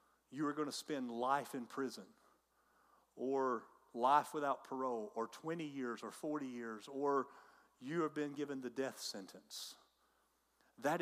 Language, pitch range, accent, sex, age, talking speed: English, 130-190 Hz, American, male, 40-59, 145 wpm